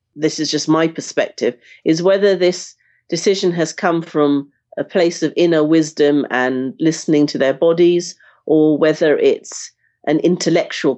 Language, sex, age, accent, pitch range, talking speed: English, female, 40-59, British, 145-165 Hz, 150 wpm